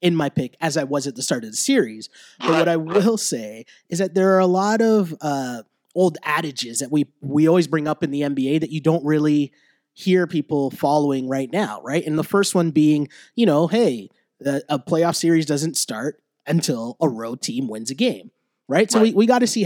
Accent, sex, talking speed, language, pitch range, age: American, male, 225 wpm, English, 140-175 Hz, 20-39